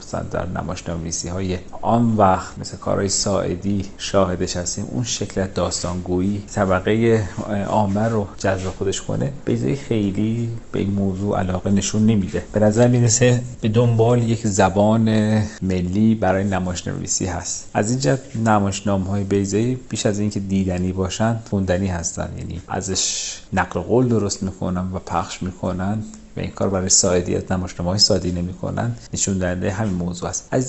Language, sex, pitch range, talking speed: Persian, male, 90-110 Hz, 150 wpm